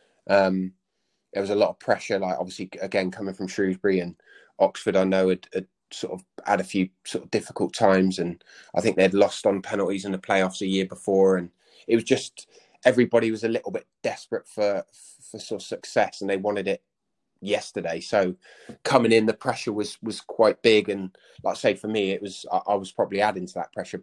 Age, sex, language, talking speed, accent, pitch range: 20-39, male, English, 215 wpm, British, 90-100 Hz